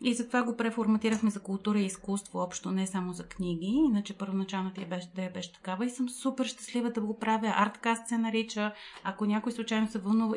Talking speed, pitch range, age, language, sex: 220 wpm, 200-235 Hz, 30-49, Bulgarian, female